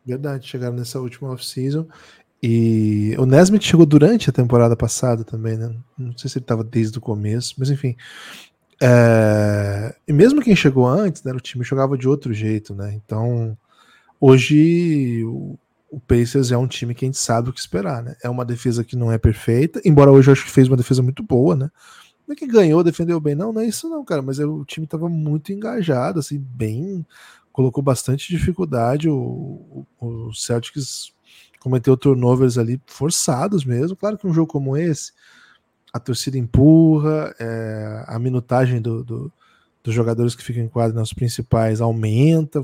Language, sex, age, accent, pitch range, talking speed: Portuguese, male, 10-29, Brazilian, 115-150 Hz, 170 wpm